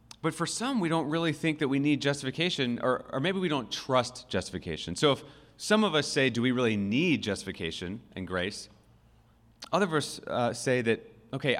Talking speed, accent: 195 wpm, American